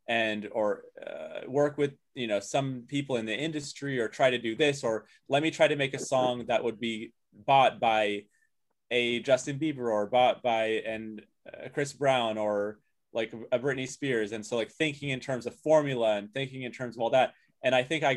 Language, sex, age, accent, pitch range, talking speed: English, male, 20-39, American, 110-140 Hz, 210 wpm